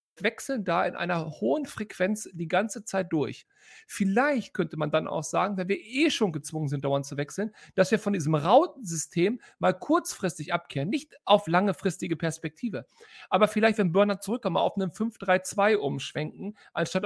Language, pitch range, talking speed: German, 160-220 Hz, 170 wpm